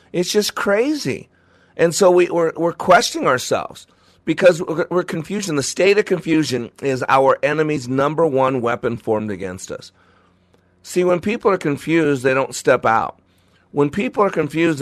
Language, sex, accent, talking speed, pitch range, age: English, male, American, 160 wpm, 115-165 Hz, 50-69